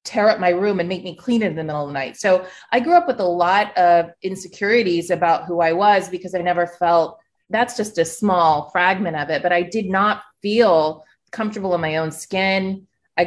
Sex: female